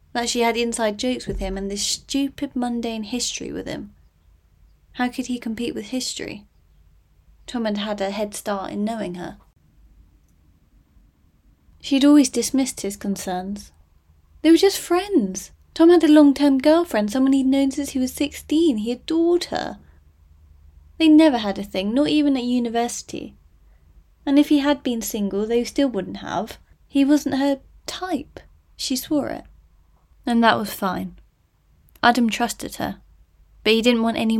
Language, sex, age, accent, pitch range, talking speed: English, female, 20-39, British, 180-250 Hz, 160 wpm